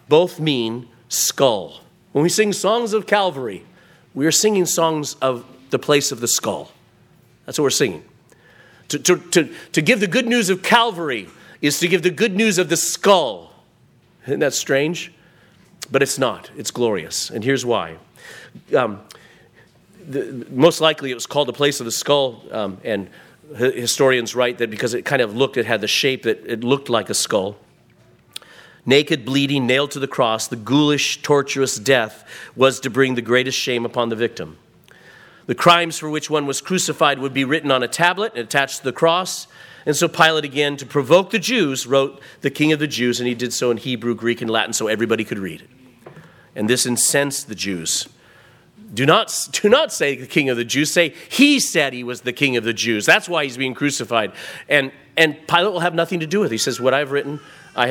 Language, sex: English, male